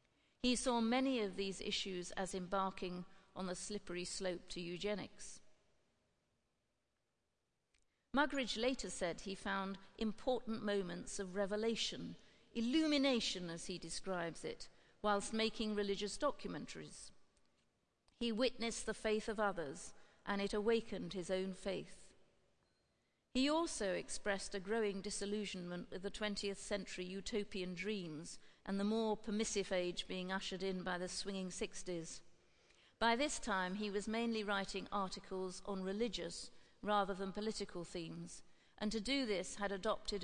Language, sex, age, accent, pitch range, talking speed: English, female, 50-69, British, 190-220 Hz, 130 wpm